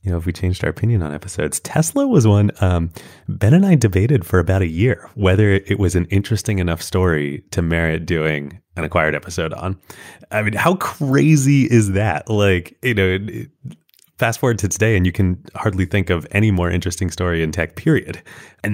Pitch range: 85-105 Hz